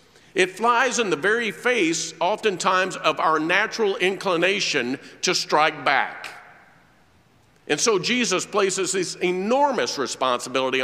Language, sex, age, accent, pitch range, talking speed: English, male, 50-69, American, 185-250 Hz, 115 wpm